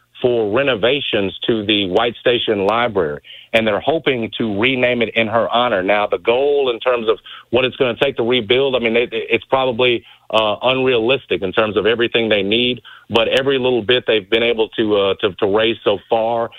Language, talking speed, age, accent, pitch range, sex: English, 200 wpm, 40-59, American, 110-130 Hz, male